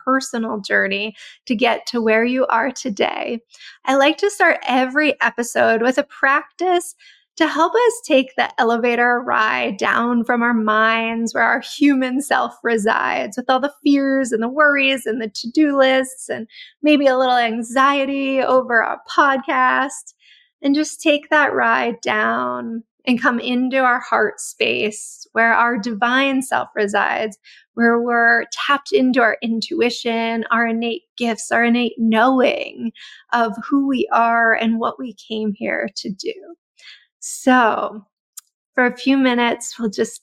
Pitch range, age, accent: 230-275 Hz, 20-39, American